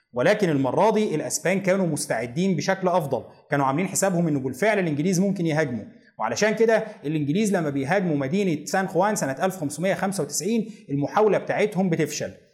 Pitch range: 150-200 Hz